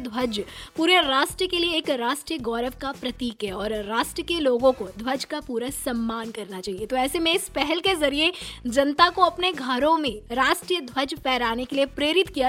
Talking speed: 165 wpm